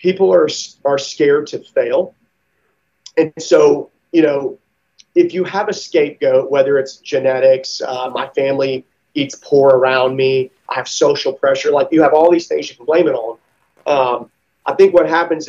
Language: English